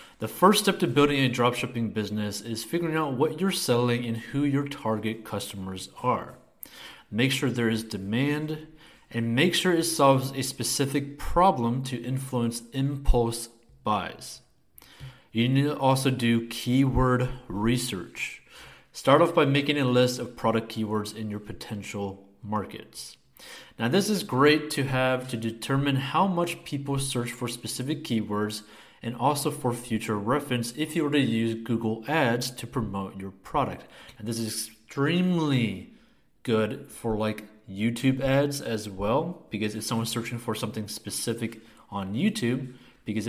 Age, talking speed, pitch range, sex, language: 30-49, 150 wpm, 110-135 Hz, male, English